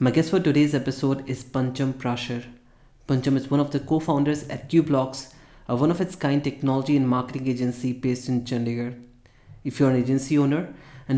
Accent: Indian